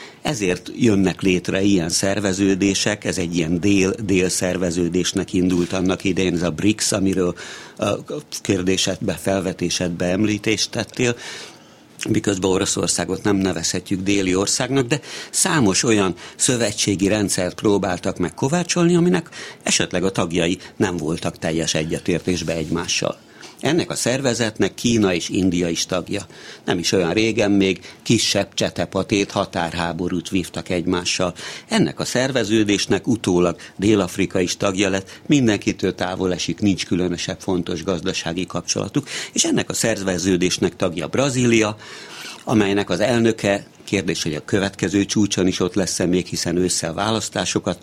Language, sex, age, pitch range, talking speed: Hungarian, male, 60-79, 90-105 Hz, 125 wpm